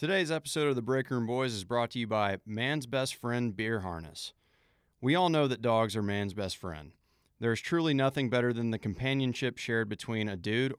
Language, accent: English, American